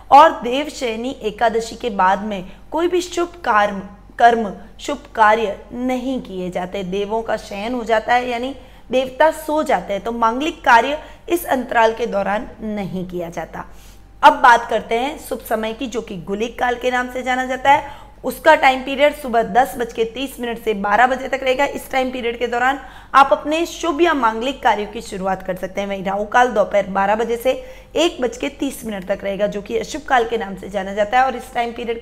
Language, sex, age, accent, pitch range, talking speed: Hindi, female, 20-39, native, 210-270 Hz, 155 wpm